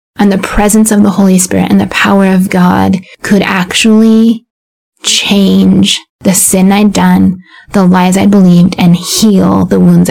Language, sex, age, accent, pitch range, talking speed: English, female, 20-39, American, 180-205 Hz, 160 wpm